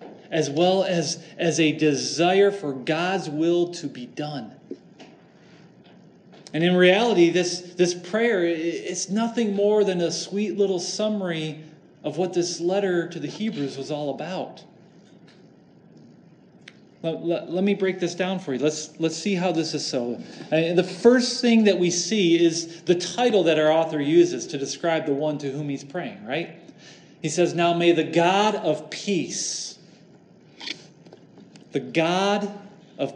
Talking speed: 155 wpm